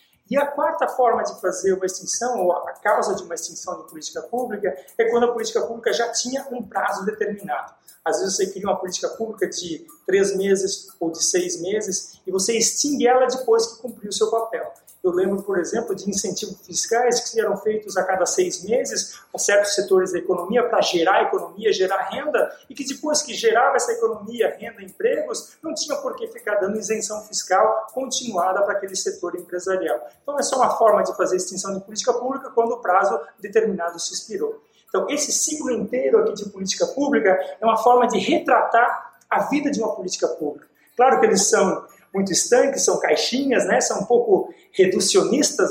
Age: 40-59